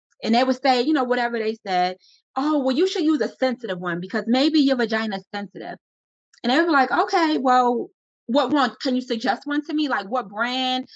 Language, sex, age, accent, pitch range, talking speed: English, female, 30-49, American, 230-295 Hz, 220 wpm